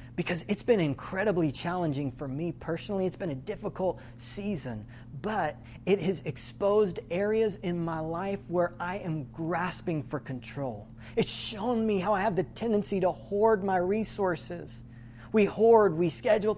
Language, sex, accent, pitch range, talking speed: English, male, American, 125-190 Hz, 155 wpm